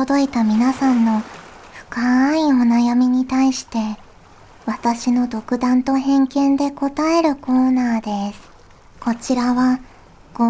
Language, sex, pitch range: Japanese, male, 230-275 Hz